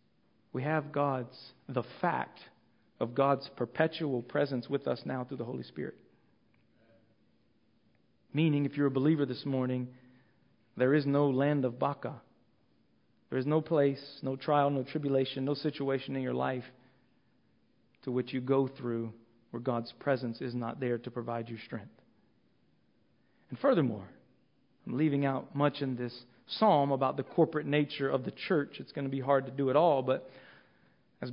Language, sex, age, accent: English, male, 40-59, American